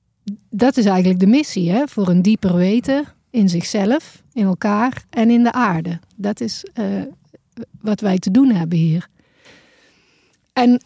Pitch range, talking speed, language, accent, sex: 195-240 Hz, 150 wpm, Dutch, Dutch, female